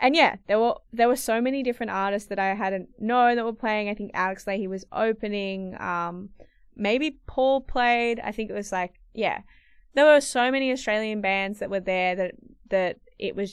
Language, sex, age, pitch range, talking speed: English, female, 20-39, 190-225 Hz, 205 wpm